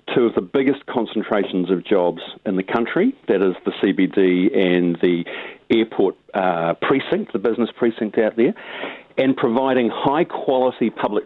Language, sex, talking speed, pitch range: English, male, 155 wpm, 95-120 Hz